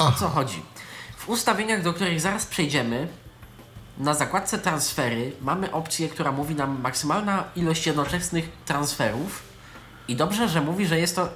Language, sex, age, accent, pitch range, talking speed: Polish, male, 20-39, native, 145-185 Hz, 150 wpm